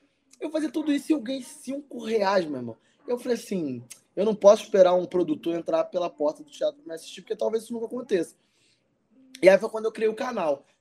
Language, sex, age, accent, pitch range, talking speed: Portuguese, male, 20-39, Brazilian, 185-265 Hz, 230 wpm